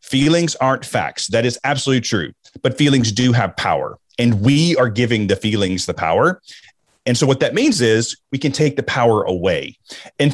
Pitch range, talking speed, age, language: 110-140 Hz, 190 wpm, 30-49, English